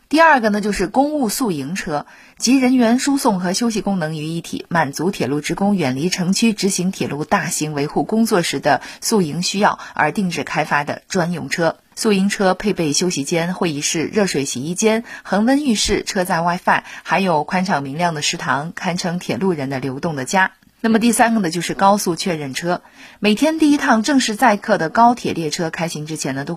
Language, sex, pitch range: Chinese, female, 160-220 Hz